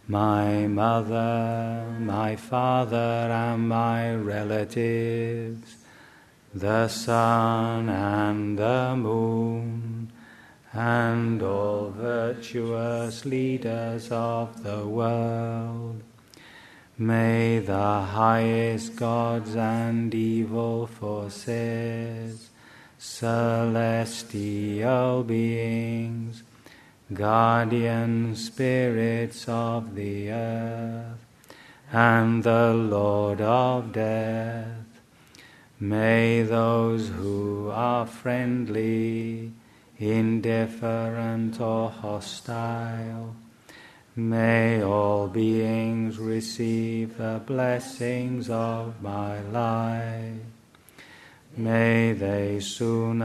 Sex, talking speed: male, 65 wpm